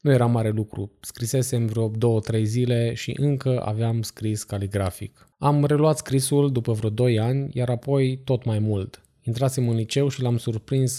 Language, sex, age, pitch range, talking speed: Romanian, male, 20-39, 110-130 Hz, 170 wpm